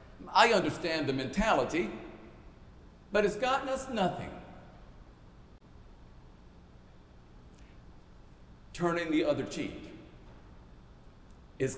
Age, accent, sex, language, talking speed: 60-79, American, male, English, 70 wpm